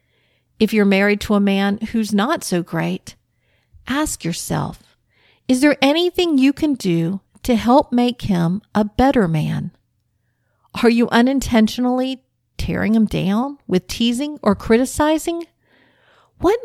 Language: English